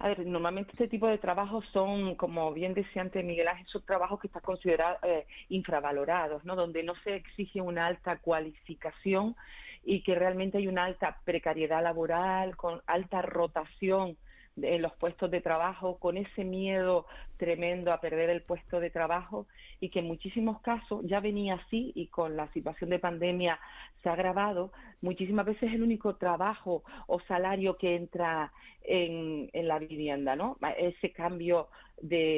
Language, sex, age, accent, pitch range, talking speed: Spanish, female, 40-59, Spanish, 165-195 Hz, 165 wpm